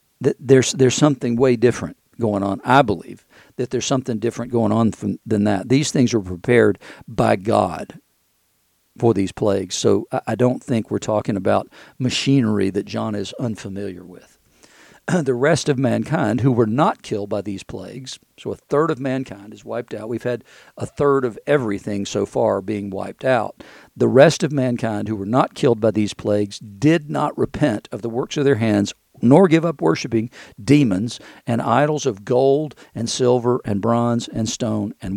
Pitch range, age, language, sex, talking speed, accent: 105-135 Hz, 50-69, English, male, 185 wpm, American